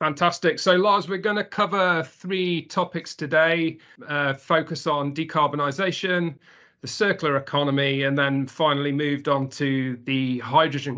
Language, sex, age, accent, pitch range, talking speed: English, male, 40-59, British, 140-170 Hz, 135 wpm